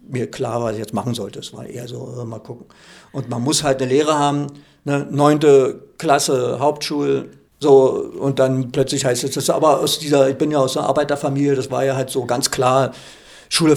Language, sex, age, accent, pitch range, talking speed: German, male, 50-69, German, 130-165 Hz, 220 wpm